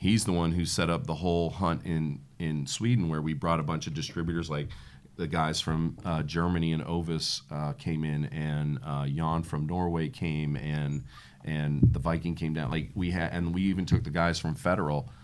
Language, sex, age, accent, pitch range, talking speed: English, male, 40-59, American, 80-95 Hz, 210 wpm